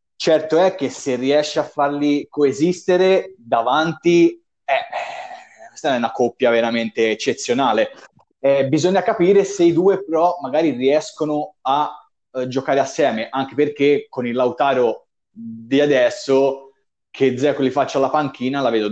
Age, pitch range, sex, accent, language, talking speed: 20-39, 130-175 Hz, male, native, Italian, 140 wpm